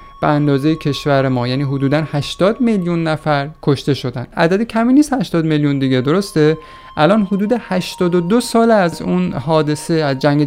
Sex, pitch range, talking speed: male, 135-175 Hz, 155 wpm